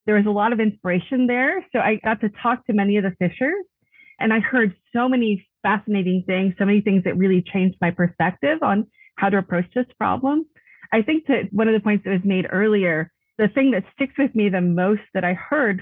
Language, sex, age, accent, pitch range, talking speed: English, female, 30-49, American, 180-225 Hz, 230 wpm